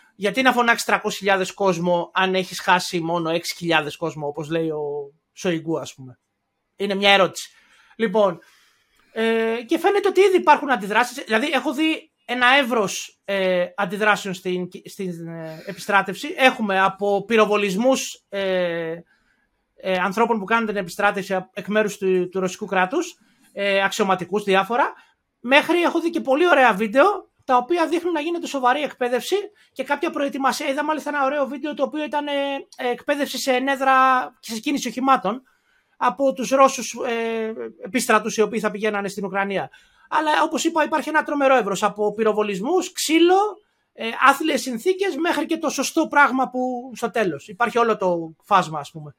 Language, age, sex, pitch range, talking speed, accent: Greek, 30-49, male, 195-280 Hz, 155 wpm, native